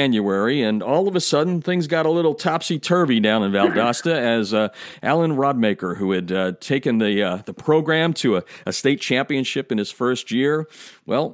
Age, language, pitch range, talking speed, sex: 50-69, English, 100-155 Hz, 190 wpm, male